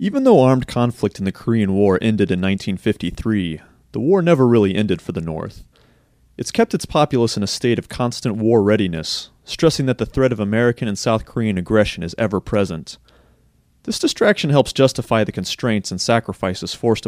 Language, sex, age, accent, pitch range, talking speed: English, male, 30-49, American, 95-125 Hz, 180 wpm